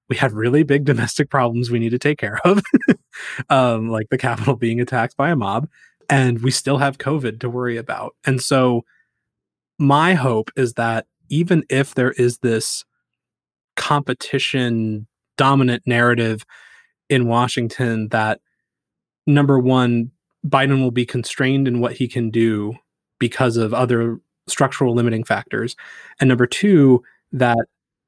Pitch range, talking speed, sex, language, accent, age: 115-135 Hz, 140 wpm, male, English, American, 20-39